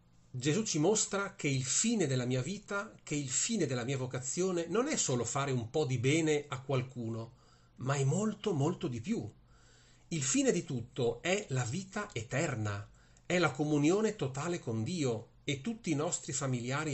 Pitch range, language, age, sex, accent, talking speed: 120-175 Hz, Italian, 40-59, male, native, 175 wpm